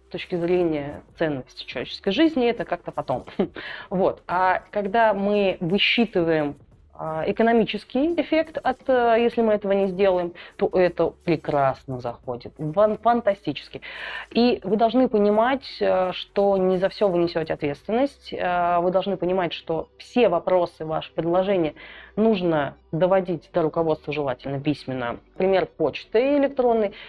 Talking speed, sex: 120 wpm, female